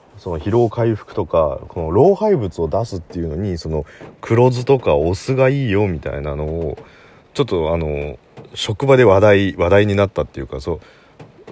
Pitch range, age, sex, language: 75-120 Hz, 30-49, male, Japanese